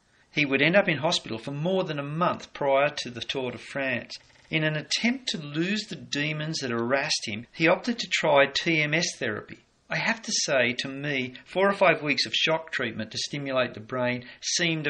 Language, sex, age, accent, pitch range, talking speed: English, male, 40-59, Australian, 120-175 Hz, 205 wpm